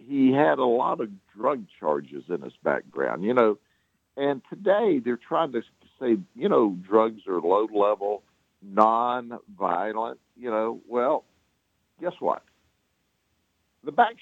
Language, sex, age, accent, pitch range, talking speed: English, male, 60-79, American, 105-150 Hz, 135 wpm